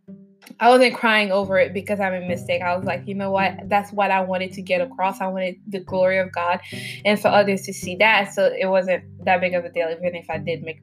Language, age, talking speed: English, 20-39, 260 wpm